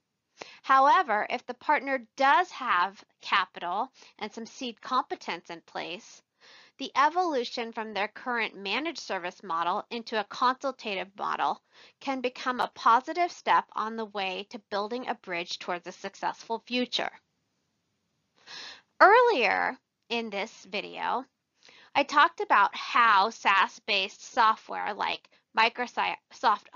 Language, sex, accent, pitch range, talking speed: English, female, American, 200-250 Hz, 120 wpm